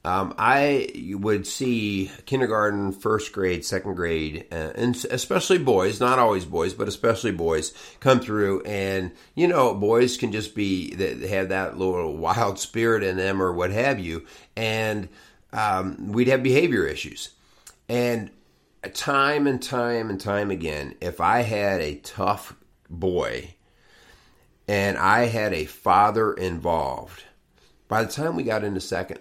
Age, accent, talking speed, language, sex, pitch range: 50-69, American, 145 wpm, English, male, 90-120 Hz